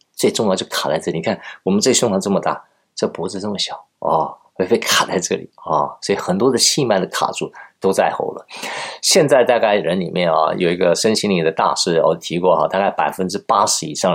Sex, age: male, 50-69